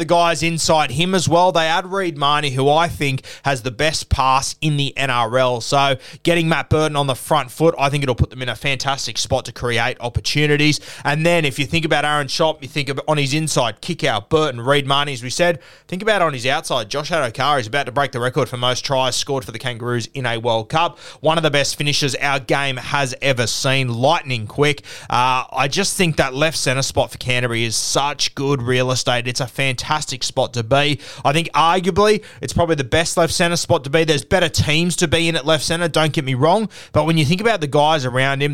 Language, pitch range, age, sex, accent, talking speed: English, 125-160 Hz, 20-39, male, Australian, 240 wpm